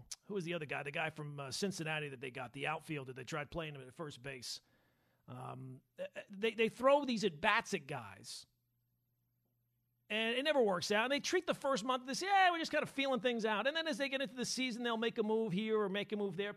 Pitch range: 160-265 Hz